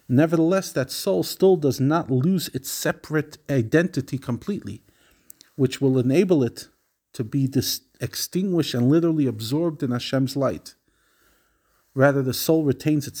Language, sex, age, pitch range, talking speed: English, male, 50-69, 125-160 Hz, 130 wpm